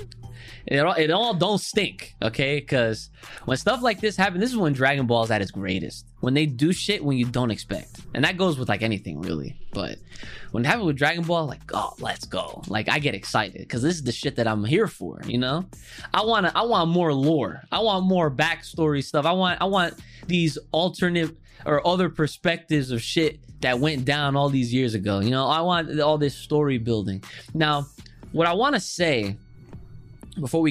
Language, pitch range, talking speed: English, 120-165 Hz, 210 wpm